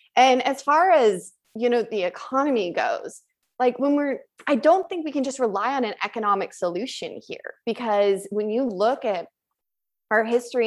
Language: English